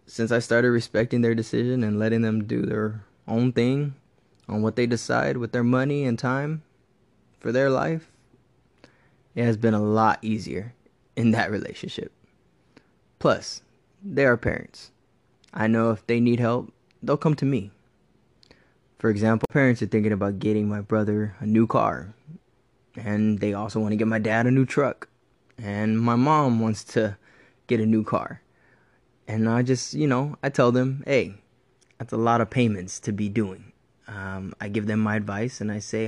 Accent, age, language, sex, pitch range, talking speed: American, 20-39, English, male, 110-125 Hz, 175 wpm